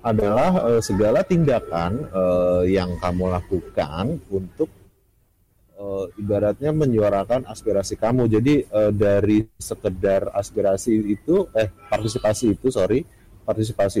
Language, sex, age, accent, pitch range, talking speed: Indonesian, male, 30-49, native, 95-115 Hz, 105 wpm